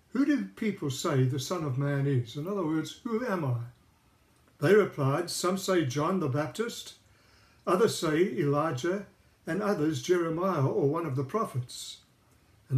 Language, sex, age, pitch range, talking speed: English, male, 60-79, 130-185 Hz, 160 wpm